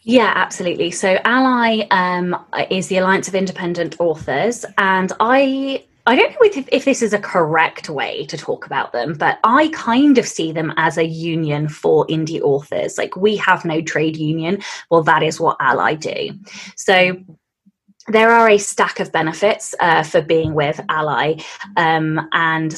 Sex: female